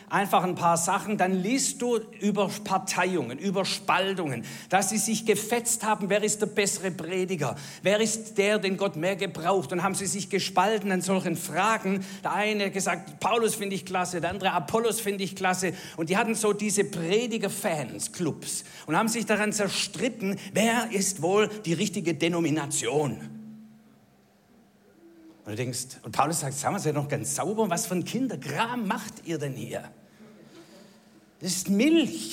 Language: German